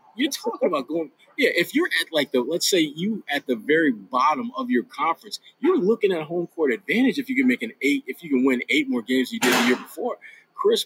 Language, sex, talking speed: English, male, 255 wpm